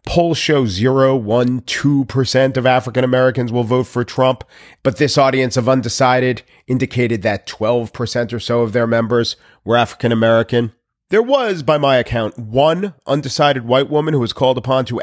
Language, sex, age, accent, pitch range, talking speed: English, male, 40-59, American, 115-150 Hz, 170 wpm